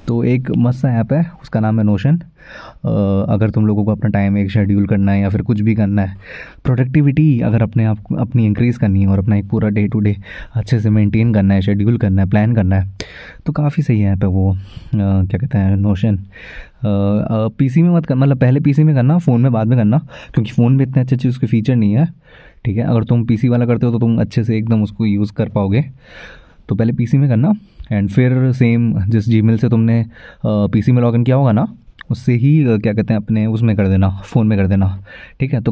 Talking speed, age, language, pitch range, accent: 235 wpm, 20-39, Hindi, 105-130 Hz, native